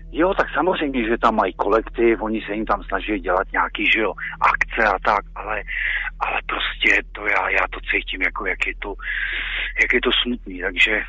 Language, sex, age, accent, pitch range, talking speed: Czech, male, 40-59, native, 100-135 Hz, 195 wpm